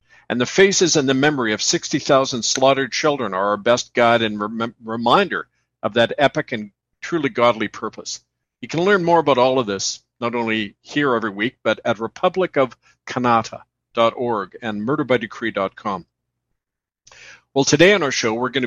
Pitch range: 115-145 Hz